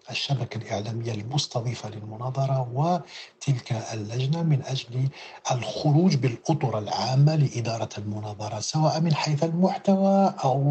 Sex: male